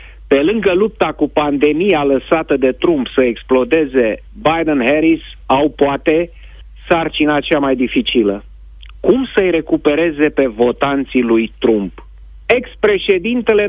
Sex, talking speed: male, 110 wpm